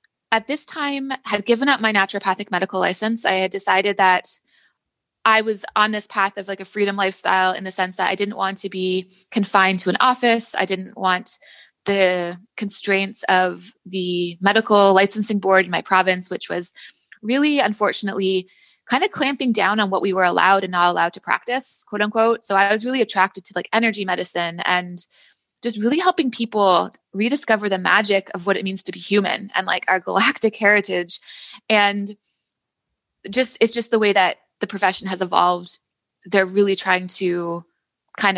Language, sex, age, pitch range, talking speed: English, female, 20-39, 185-215 Hz, 180 wpm